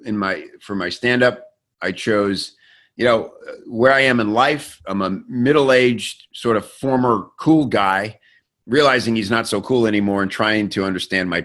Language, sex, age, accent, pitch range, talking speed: English, male, 50-69, American, 95-120 Hz, 175 wpm